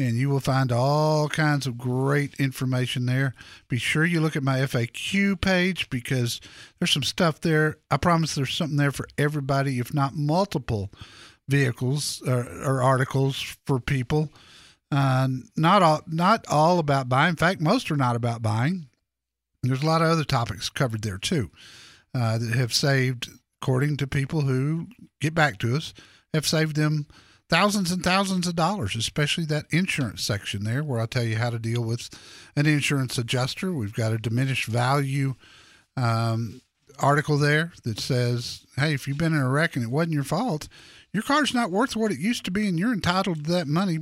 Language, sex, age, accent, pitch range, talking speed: English, male, 50-69, American, 125-165 Hz, 185 wpm